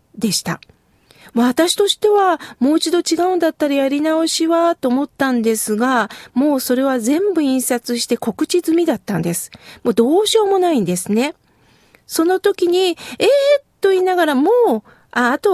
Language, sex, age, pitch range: Japanese, female, 40-59, 240-370 Hz